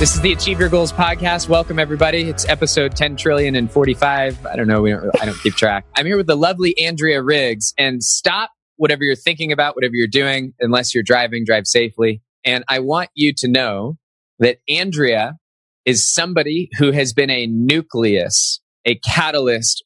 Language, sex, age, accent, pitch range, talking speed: English, male, 20-39, American, 115-145 Hz, 190 wpm